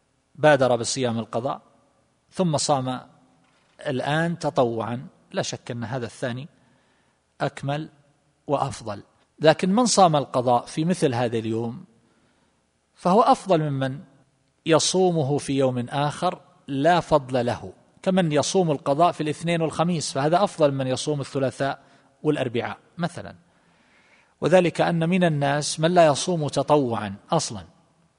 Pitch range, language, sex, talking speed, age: 125-160 Hz, Arabic, male, 115 wpm, 40-59